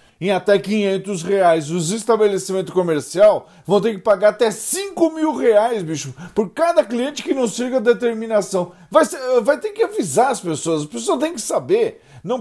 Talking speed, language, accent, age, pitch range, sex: 185 wpm, Portuguese, Brazilian, 40-59, 180-235 Hz, male